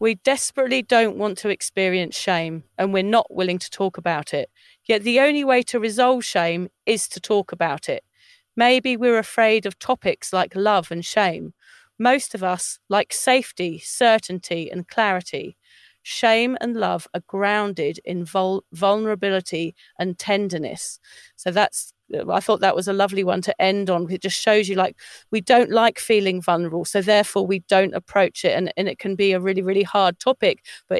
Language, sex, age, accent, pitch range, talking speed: English, female, 40-59, British, 185-225 Hz, 180 wpm